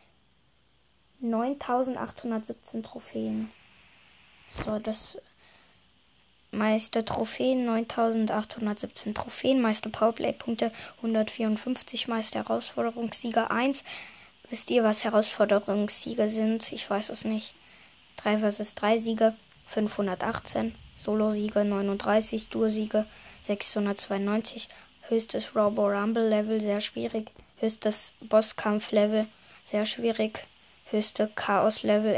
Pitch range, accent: 205-225 Hz, German